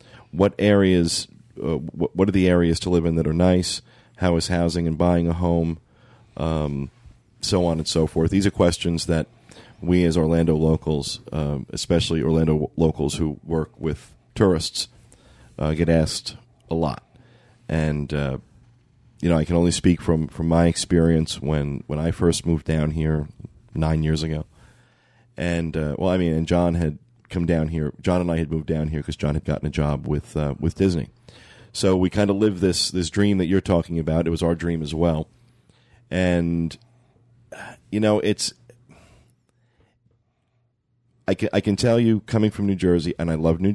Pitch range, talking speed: 80-100 Hz, 180 wpm